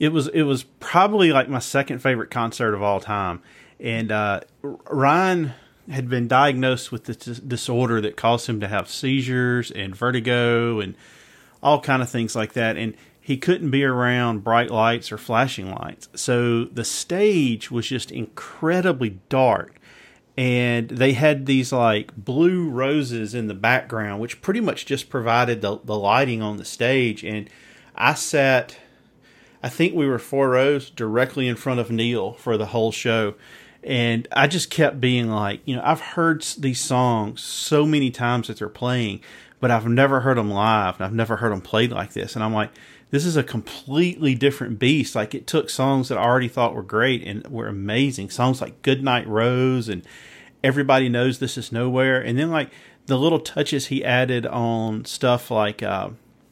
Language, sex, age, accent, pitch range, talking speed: English, male, 40-59, American, 115-135 Hz, 180 wpm